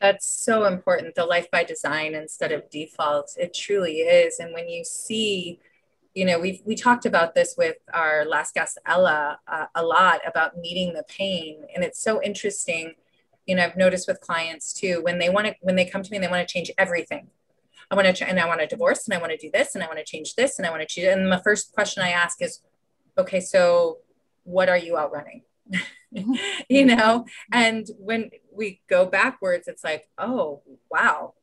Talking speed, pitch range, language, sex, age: 220 wpm, 175-220 Hz, English, female, 20-39